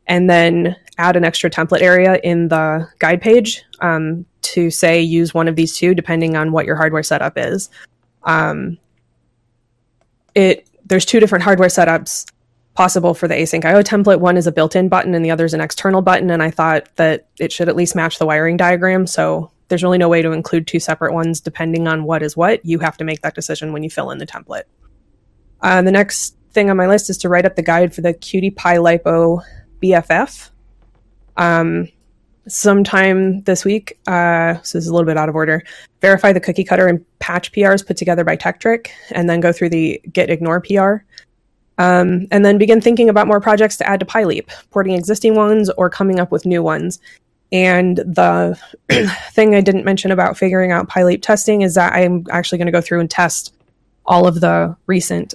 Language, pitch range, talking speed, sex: English, 160-185 Hz, 205 wpm, female